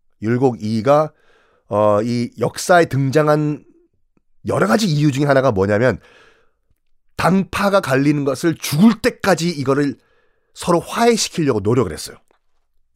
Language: Korean